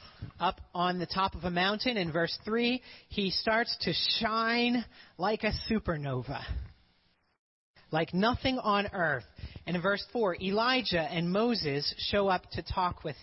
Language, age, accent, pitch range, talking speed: English, 30-49, American, 145-200 Hz, 150 wpm